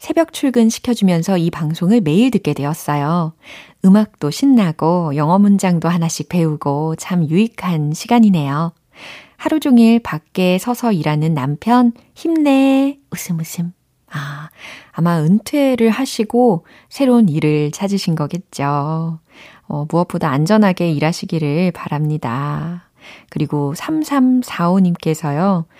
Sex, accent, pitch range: female, native, 155-225 Hz